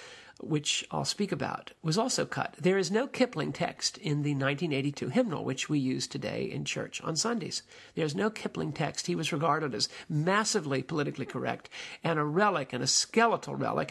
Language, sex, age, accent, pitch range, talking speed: English, male, 50-69, American, 150-200 Hz, 180 wpm